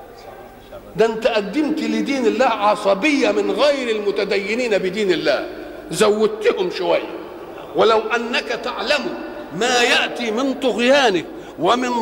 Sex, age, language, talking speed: male, 50-69, Arabic, 105 wpm